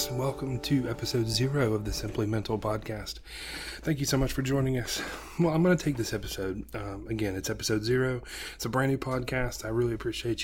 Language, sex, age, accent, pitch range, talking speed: English, male, 30-49, American, 110-135 Hz, 205 wpm